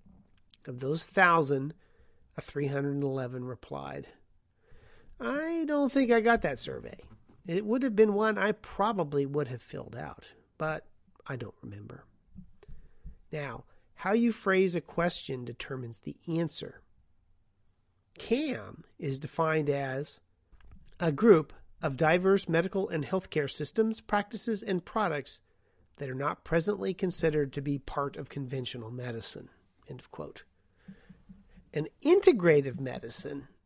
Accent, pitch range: American, 140-200 Hz